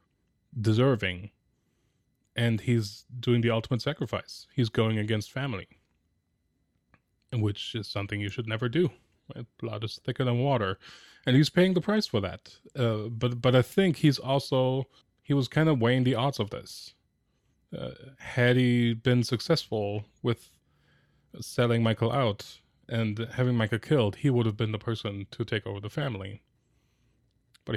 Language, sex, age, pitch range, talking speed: English, male, 20-39, 105-125 Hz, 155 wpm